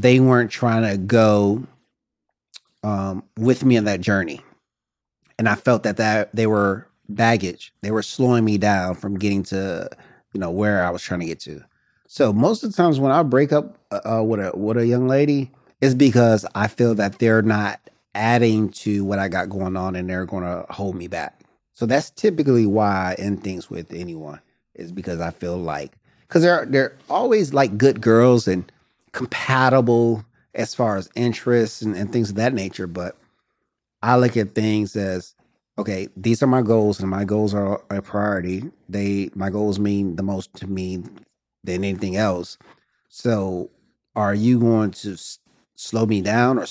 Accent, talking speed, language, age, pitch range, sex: American, 185 wpm, English, 30-49, 95-120 Hz, male